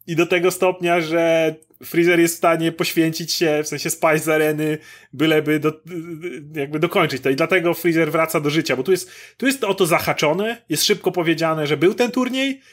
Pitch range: 150-180 Hz